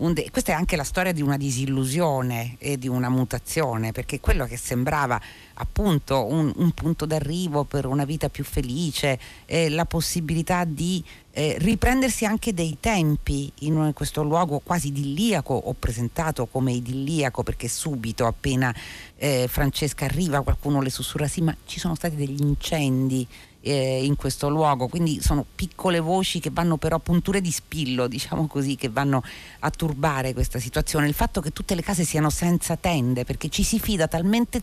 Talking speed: 165 wpm